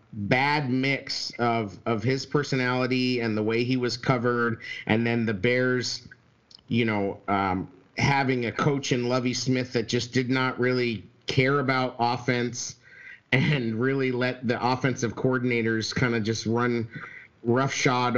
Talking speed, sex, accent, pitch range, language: 145 wpm, male, American, 115-130 Hz, English